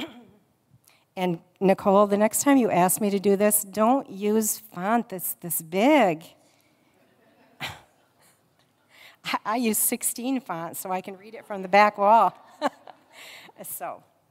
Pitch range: 165-210 Hz